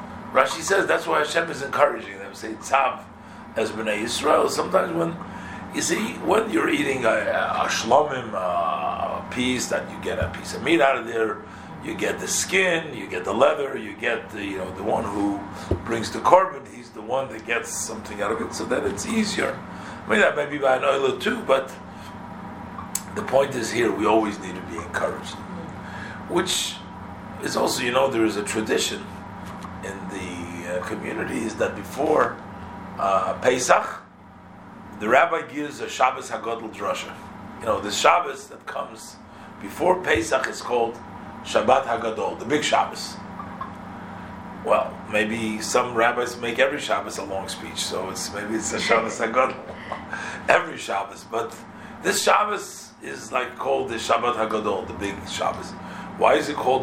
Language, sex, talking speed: English, male, 170 wpm